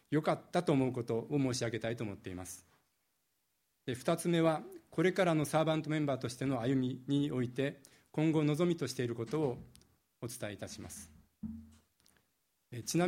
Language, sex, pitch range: Japanese, male, 120-155 Hz